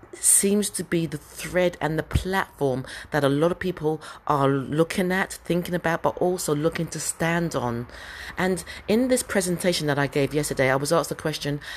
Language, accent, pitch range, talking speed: English, British, 145-185 Hz, 190 wpm